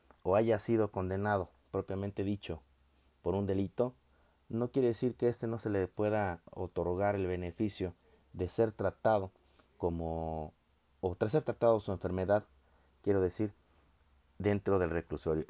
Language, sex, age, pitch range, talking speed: English, male, 30-49, 85-105 Hz, 140 wpm